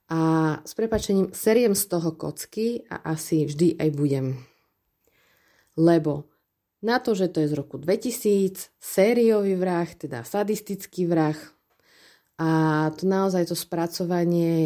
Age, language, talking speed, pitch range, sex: 30-49, Slovak, 125 wpm, 155-190 Hz, female